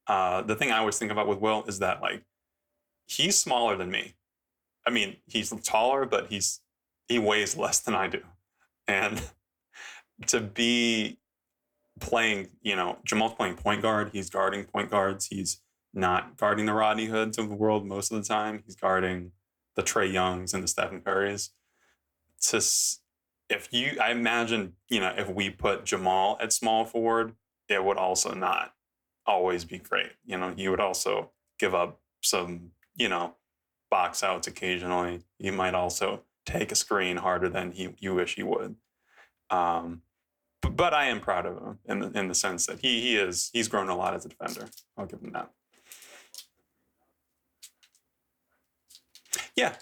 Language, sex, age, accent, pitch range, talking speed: English, male, 20-39, American, 90-115 Hz, 165 wpm